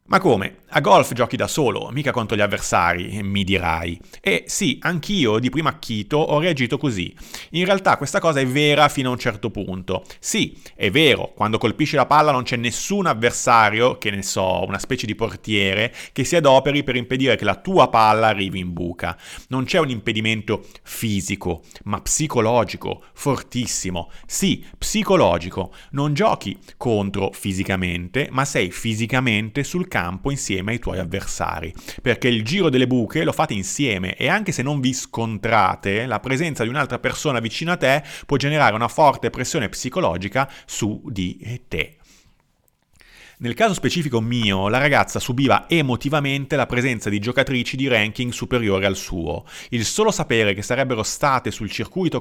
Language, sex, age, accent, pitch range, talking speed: Italian, male, 30-49, native, 100-140 Hz, 165 wpm